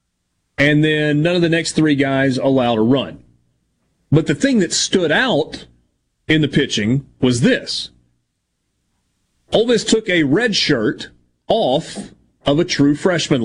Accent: American